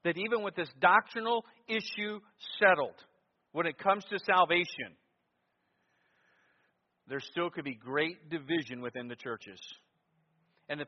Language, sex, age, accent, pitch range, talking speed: English, male, 50-69, American, 130-200 Hz, 125 wpm